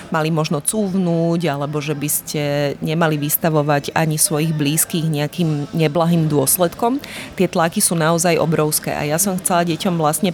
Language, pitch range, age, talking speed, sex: Slovak, 155-175 Hz, 30-49, 150 wpm, female